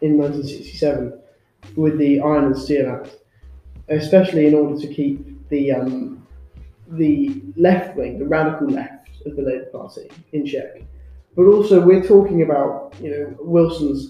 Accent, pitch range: British, 135-160 Hz